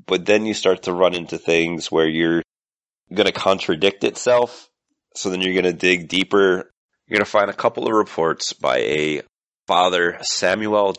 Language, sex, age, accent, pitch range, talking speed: English, male, 30-49, American, 80-105 Hz, 180 wpm